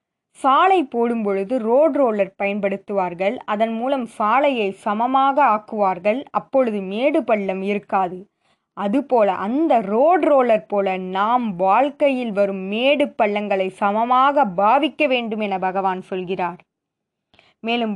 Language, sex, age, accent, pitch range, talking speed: Tamil, female, 20-39, native, 200-255 Hz, 105 wpm